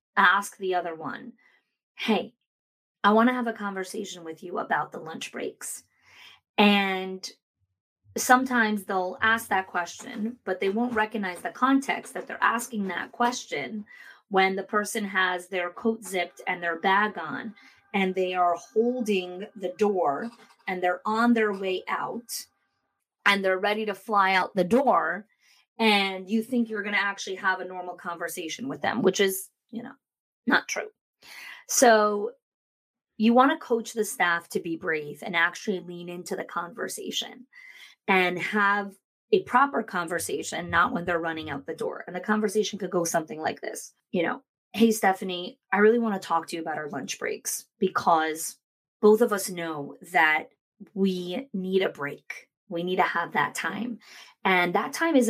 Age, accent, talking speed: 30-49, American, 170 wpm